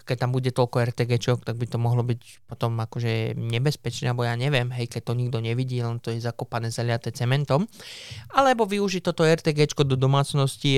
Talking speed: 185 wpm